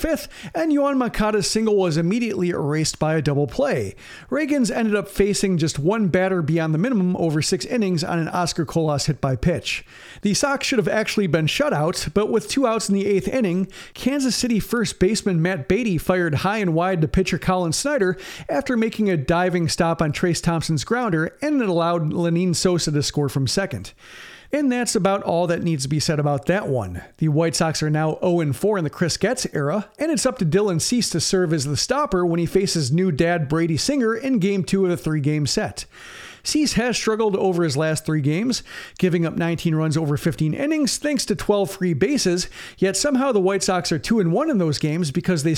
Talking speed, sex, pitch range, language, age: 210 wpm, male, 160-210 Hz, English, 40-59